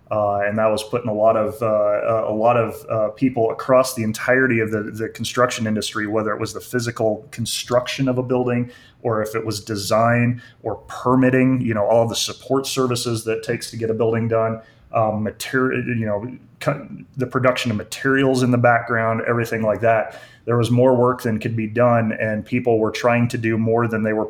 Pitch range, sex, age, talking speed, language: 110-125 Hz, male, 30-49, 210 wpm, English